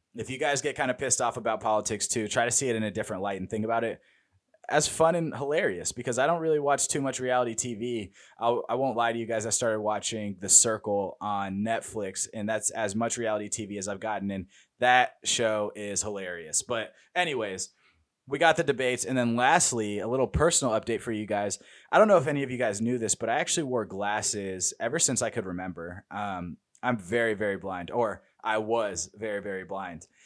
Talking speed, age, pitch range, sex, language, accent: 220 wpm, 20-39, 105-125 Hz, male, English, American